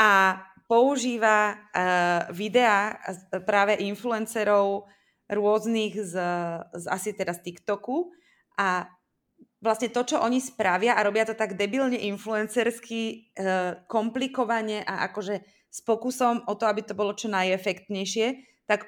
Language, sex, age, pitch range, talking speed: English, female, 20-39, 190-225 Hz, 125 wpm